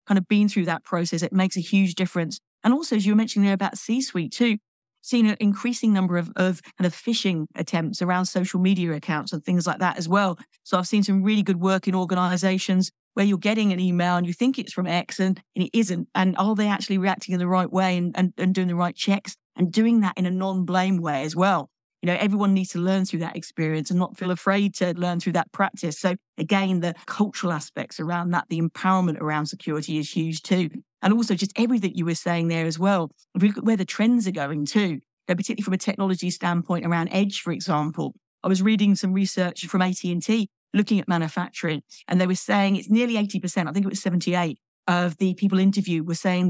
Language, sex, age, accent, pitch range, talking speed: English, female, 40-59, British, 175-200 Hz, 230 wpm